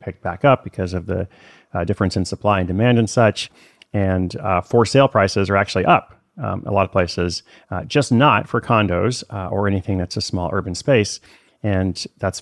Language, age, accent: English, 30-49, American